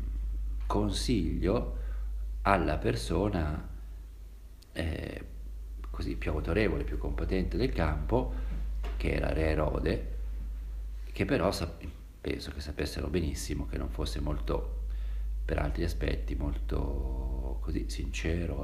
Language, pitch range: Italian, 65-80 Hz